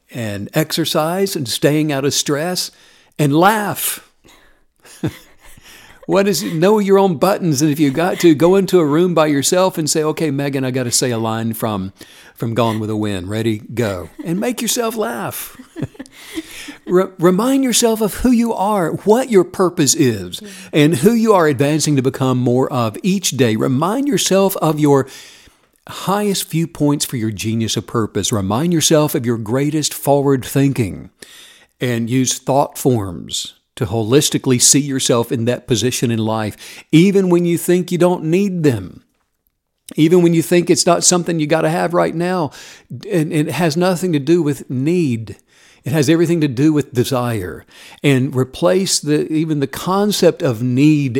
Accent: American